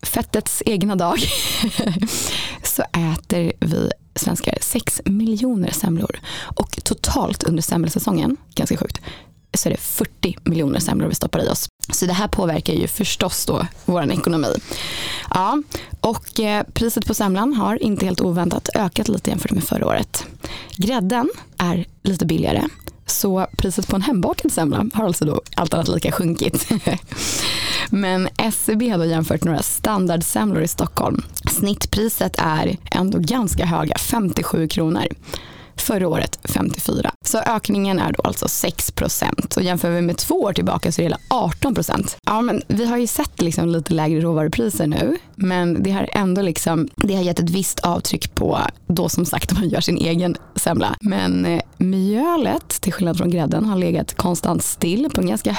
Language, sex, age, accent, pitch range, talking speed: Swedish, female, 20-39, native, 170-215 Hz, 160 wpm